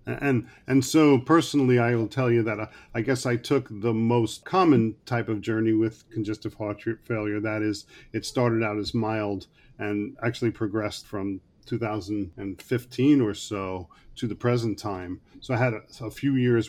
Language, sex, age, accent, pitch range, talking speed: English, male, 40-59, American, 110-130 Hz, 175 wpm